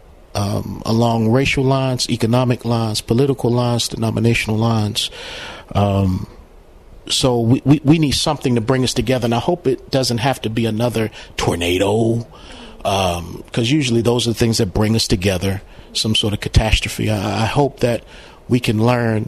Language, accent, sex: English, American, male